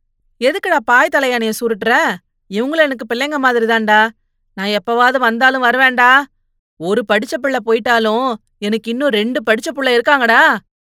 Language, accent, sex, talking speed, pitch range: Tamil, native, female, 120 wpm, 185-230 Hz